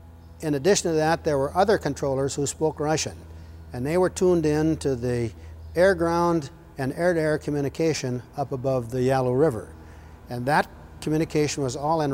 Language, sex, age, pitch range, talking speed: English, male, 60-79, 120-155 Hz, 165 wpm